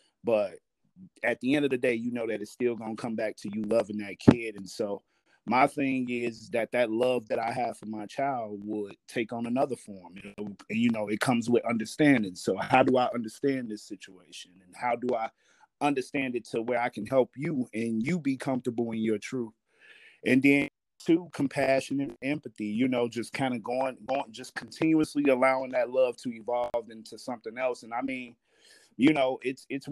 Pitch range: 115-140 Hz